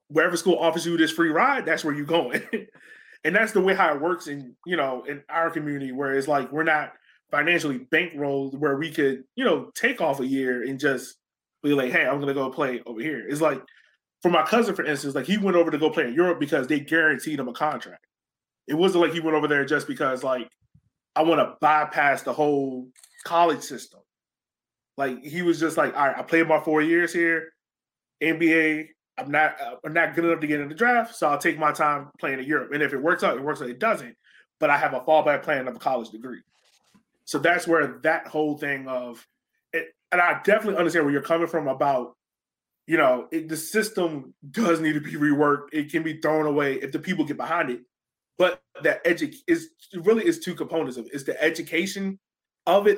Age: 20-39